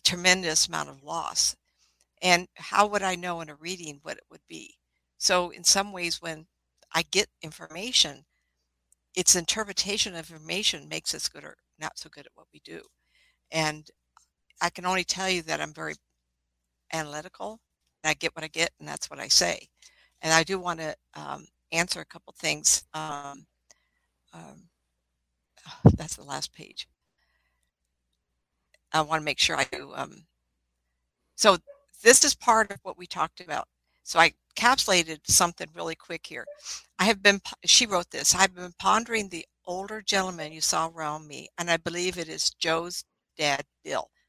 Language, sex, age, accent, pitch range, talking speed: English, female, 60-79, American, 145-185 Hz, 165 wpm